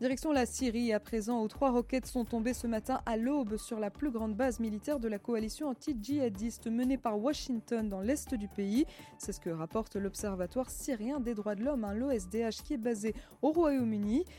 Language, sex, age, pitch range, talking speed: French, female, 20-39, 215-270 Hz, 200 wpm